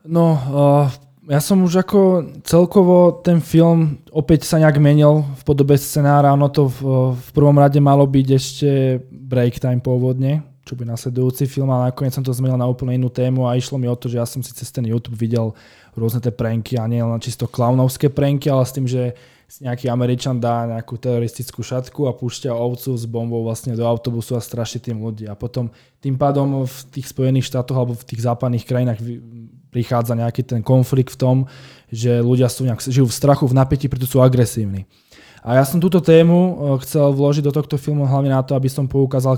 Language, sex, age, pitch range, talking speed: Slovak, male, 20-39, 125-140 Hz, 200 wpm